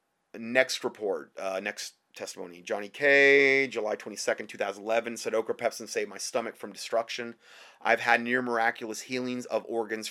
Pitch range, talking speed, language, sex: 115-165 Hz, 165 wpm, English, male